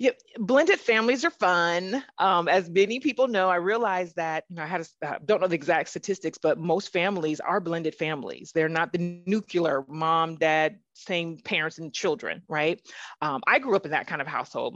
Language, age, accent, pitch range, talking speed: English, 30-49, American, 165-210 Hz, 205 wpm